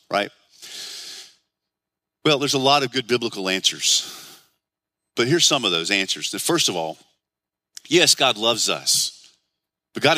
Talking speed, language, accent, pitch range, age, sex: 145 wpm, English, American, 110-165 Hz, 40-59, male